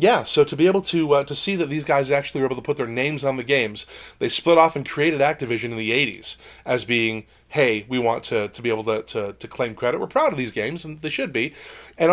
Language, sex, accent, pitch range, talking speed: English, male, American, 120-170 Hz, 270 wpm